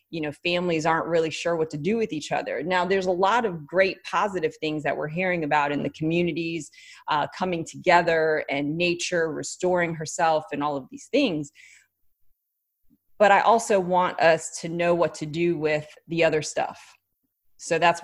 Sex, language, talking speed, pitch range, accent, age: female, English, 185 wpm, 155-180 Hz, American, 30-49